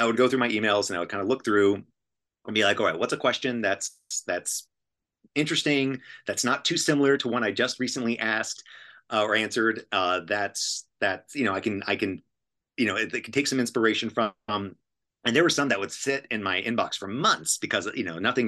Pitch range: 100-125 Hz